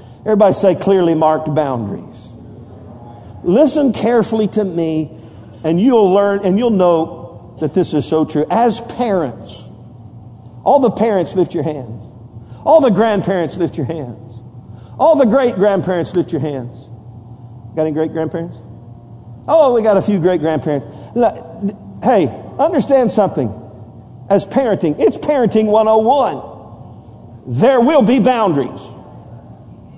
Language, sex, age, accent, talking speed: English, male, 50-69, American, 130 wpm